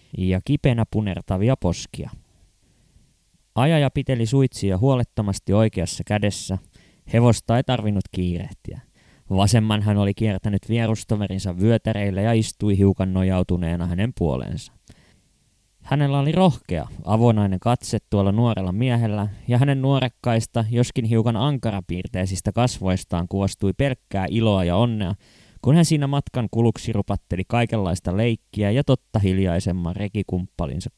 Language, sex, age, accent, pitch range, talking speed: Finnish, male, 20-39, native, 95-125 Hz, 110 wpm